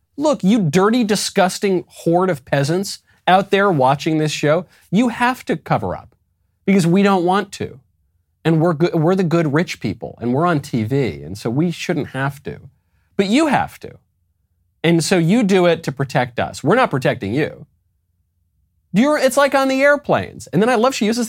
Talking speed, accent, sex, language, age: 190 wpm, American, male, English, 30-49